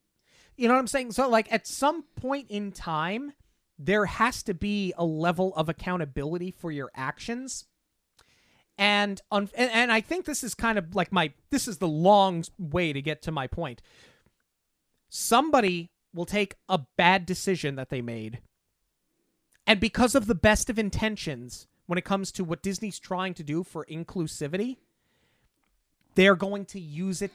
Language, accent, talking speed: English, American, 170 wpm